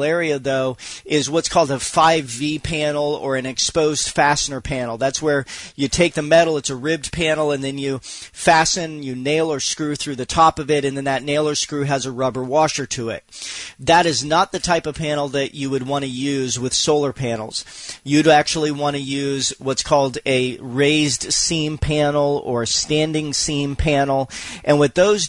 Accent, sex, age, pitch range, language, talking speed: American, male, 40-59, 135-160 Hz, English, 195 wpm